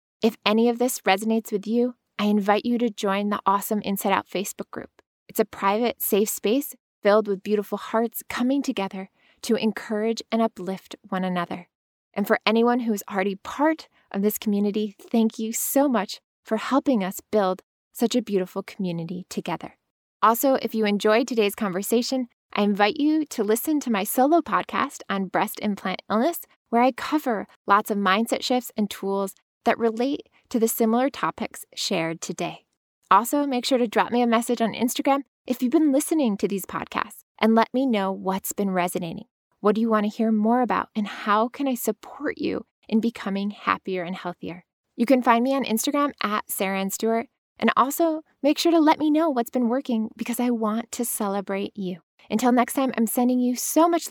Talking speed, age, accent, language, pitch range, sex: 190 wpm, 20-39, American, English, 200-250 Hz, female